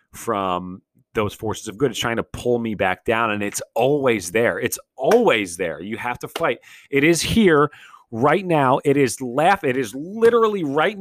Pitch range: 115-140 Hz